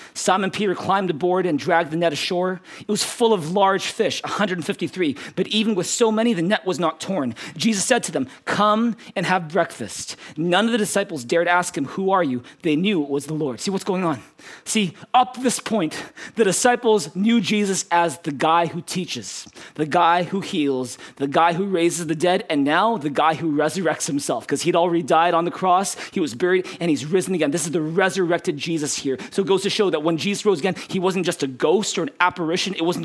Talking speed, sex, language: 225 wpm, male, English